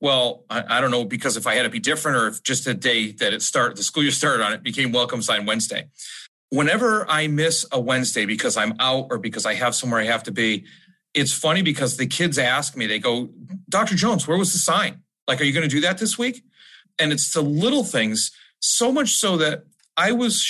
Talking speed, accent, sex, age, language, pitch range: 235 wpm, American, male, 40-59, English, 125-165 Hz